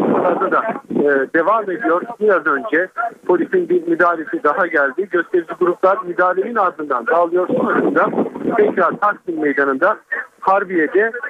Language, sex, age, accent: Turkish, male, 50-69, native